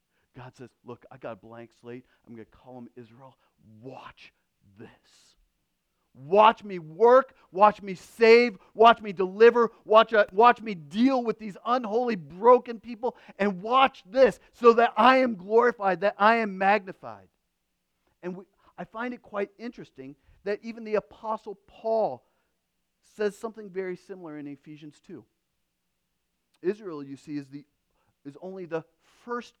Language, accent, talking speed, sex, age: English, American, 145 wpm, male, 40-59